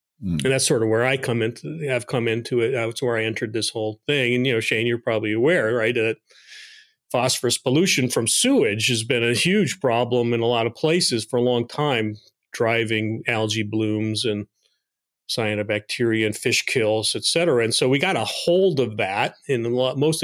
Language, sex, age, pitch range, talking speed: English, male, 40-59, 110-140 Hz, 195 wpm